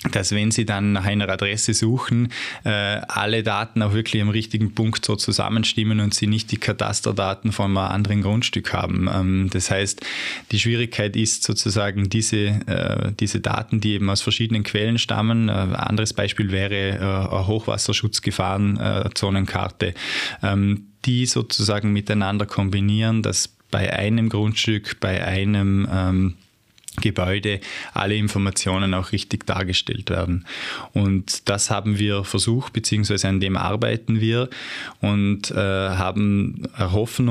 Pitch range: 100-110 Hz